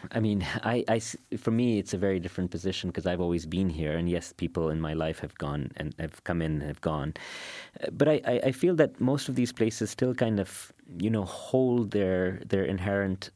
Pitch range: 90-105 Hz